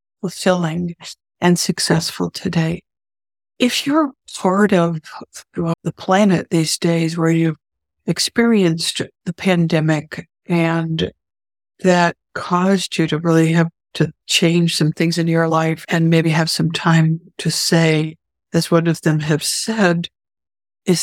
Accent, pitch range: American, 165-185 Hz